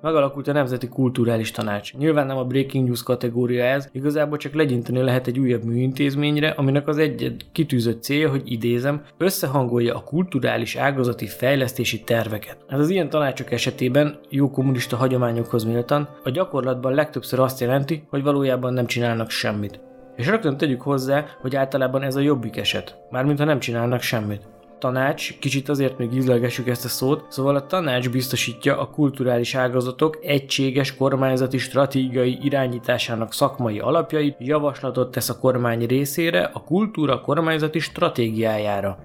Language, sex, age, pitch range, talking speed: Hungarian, male, 20-39, 125-145 Hz, 150 wpm